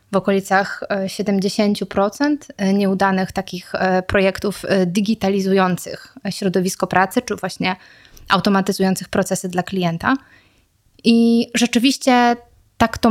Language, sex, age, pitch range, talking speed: English, female, 20-39, 185-215 Hz, 85 wpm